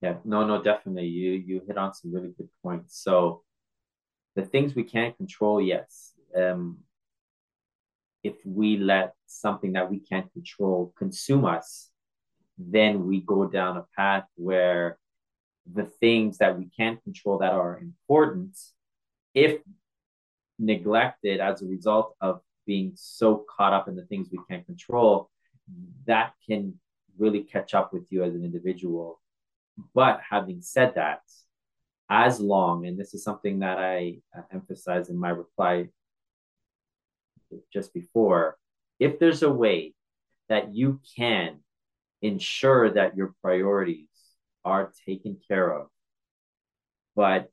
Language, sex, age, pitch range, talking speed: English, male, 30-49, 90-115 Hz, 135 wpm